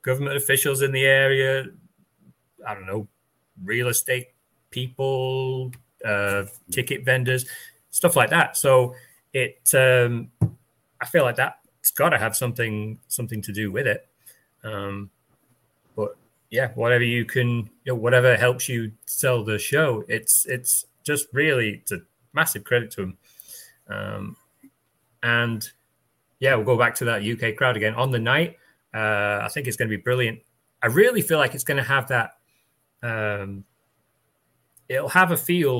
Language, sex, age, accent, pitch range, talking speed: English, male, 30-49, British, 115-135 Hz, 155 wpm